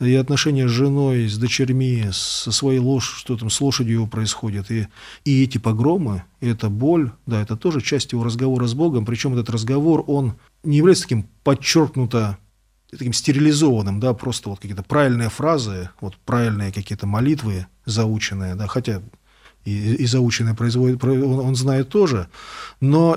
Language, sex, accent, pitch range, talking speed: Russian, male, native, 105-135 Hz, 160 wpm